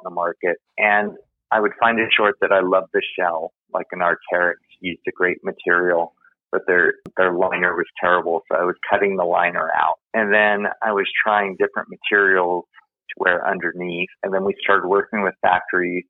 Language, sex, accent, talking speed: English, male, American, 185 wpm